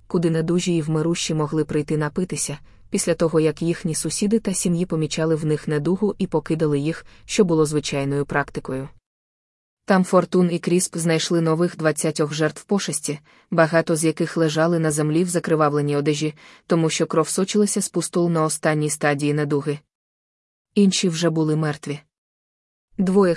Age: 20-39